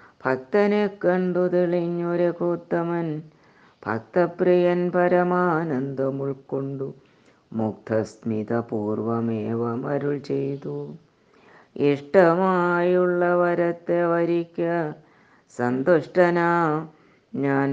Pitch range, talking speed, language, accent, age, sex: 135-180 Hz, 45 wpm, Malayalam, native, 20-39, female